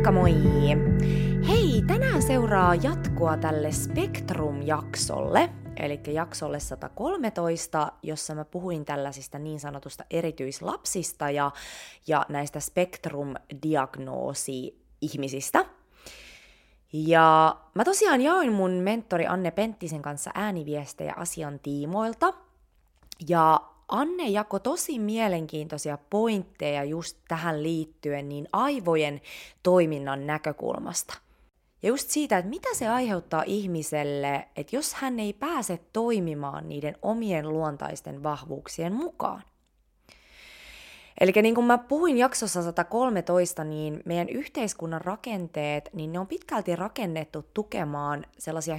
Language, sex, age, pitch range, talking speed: Finnish, female, 20-39, 150-205 Hz, 105 wpm